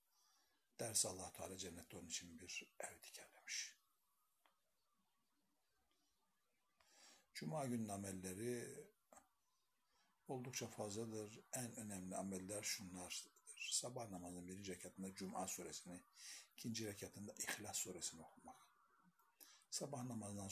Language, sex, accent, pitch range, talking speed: Turkish, male, native, 95-110 Hz, 85 wpm